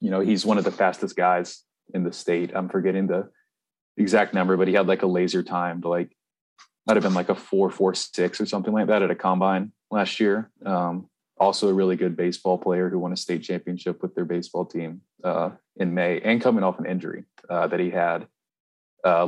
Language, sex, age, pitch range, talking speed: English, male, 20-39, 85-95 Hz, 220 wpm